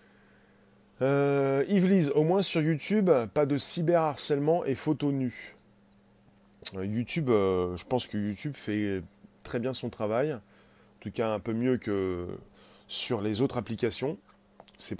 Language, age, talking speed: French, 30-49, 145 wpm